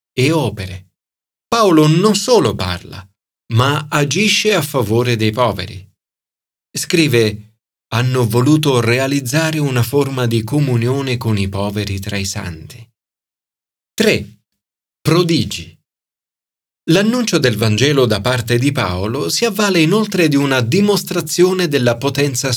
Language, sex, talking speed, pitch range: Italian, male, 115 wpm, 105-165 Hz